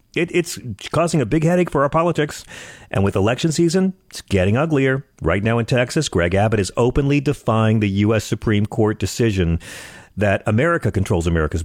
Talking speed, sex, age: 170 wpm, male, 40-59